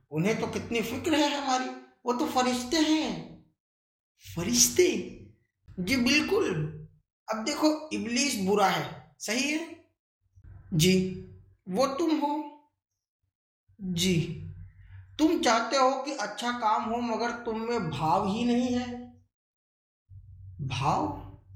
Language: Hindi